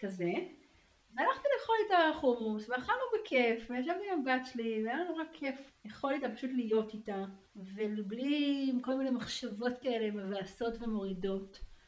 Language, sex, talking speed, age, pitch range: Hebrew, female, 130 wpm, 40-59, 195-275 Hz